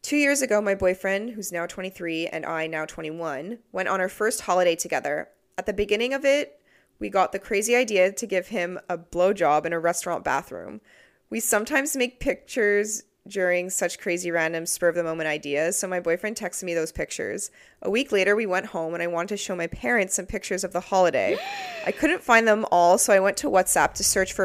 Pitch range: 185-250 Hz